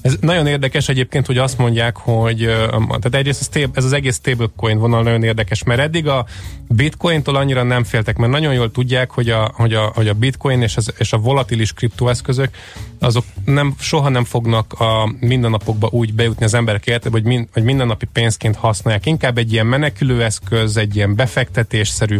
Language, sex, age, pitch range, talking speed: Hungarian, male, 20-39, 110-130 Hz, 160 wpm